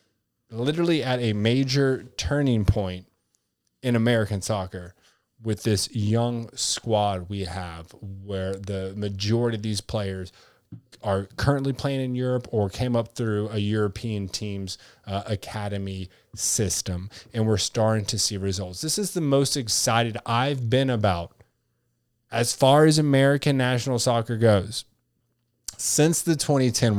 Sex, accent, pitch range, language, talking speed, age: male, American, 100-125 Hz, English, 135 wpm, 20-39